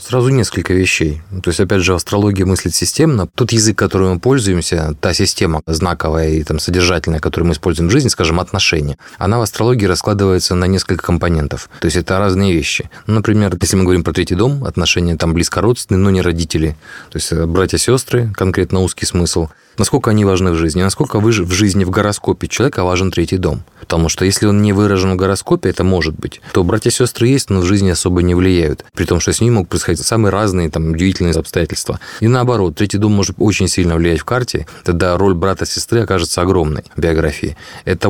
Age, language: 20-39, Russian